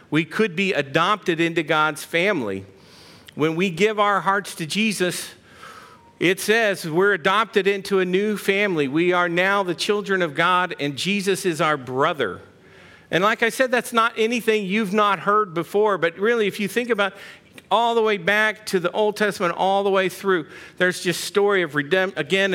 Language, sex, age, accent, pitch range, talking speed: English, male, 50-69, American, 155-200 Hz, 180 wpm